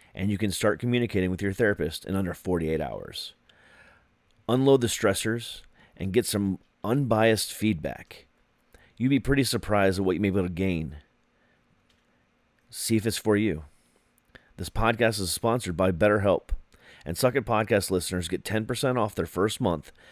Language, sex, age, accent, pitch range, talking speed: English, male, 30-49, American, 95-125 Hz, 160 wpm